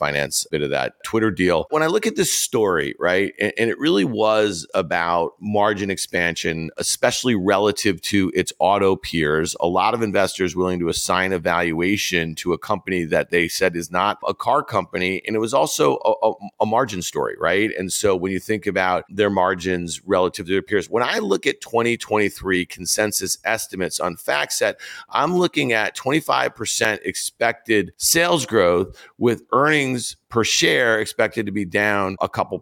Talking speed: 180 wpm